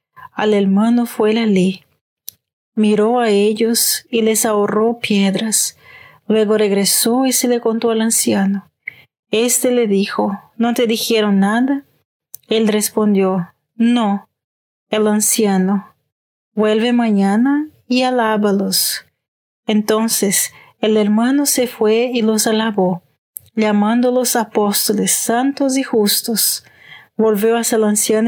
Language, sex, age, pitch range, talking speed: Spanish, female, 30-49, 205-235 Hz, 110 wpm